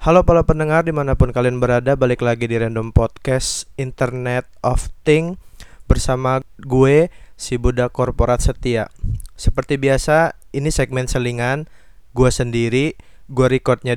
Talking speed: 125 wpm